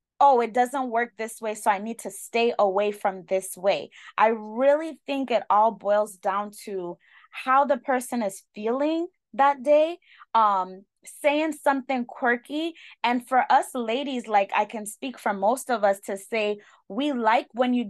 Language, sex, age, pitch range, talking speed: English, female, 20-39, 205-265 Hz, 175 wpm